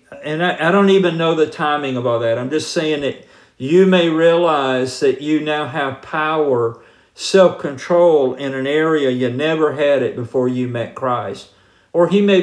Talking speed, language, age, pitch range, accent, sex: 185 wpm, English, 50-69, 135-195 Hz, American, male